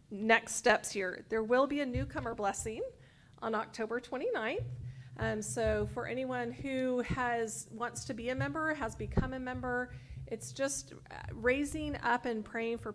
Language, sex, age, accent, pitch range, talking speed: English, female, 40-59, American, 205-255 Hz, 160 wpm